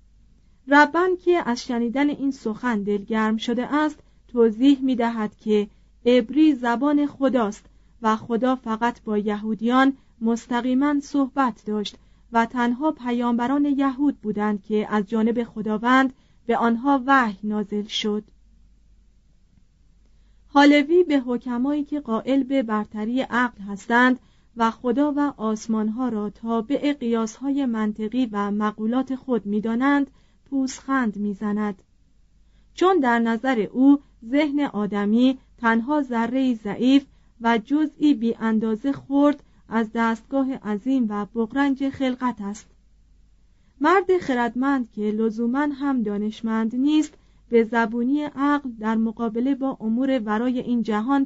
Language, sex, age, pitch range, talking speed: Persian, female, 40-59, 220-275 Hz, 115 wpm